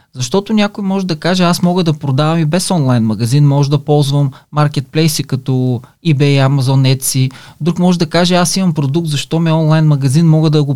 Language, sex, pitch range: Bulgarian, male, 140-170 Hz